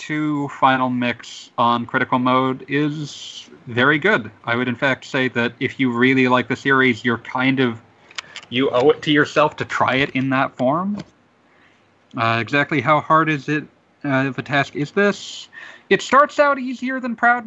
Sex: male